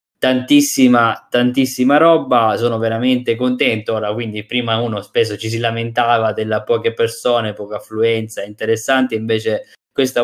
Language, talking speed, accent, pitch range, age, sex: Italian, 130 wpm, native, 105-125 Hz, 20-39, male